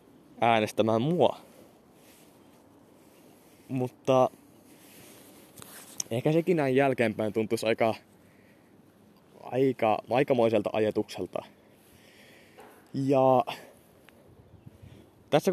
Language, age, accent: Finnish, 20-39, native